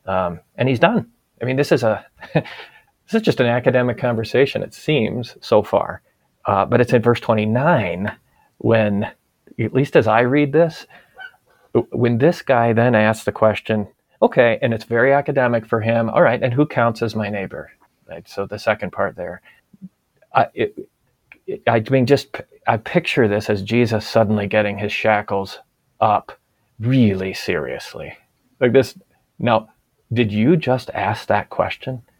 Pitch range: 110-150 Hz